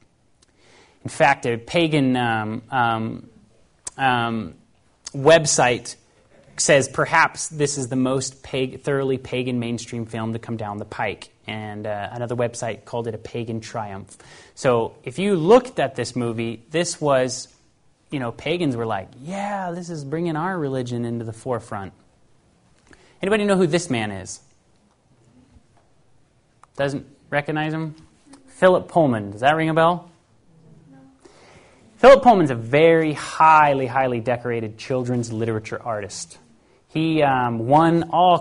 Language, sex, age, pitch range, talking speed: Danish, male, 30-49, 120-155 Hz, 135 wpm